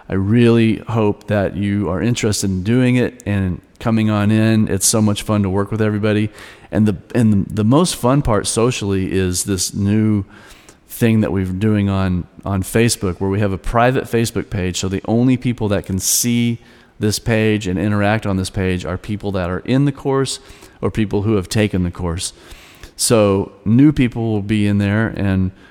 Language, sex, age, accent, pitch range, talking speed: English, male, 40-59, American, 95-120 Hz, 195 wpm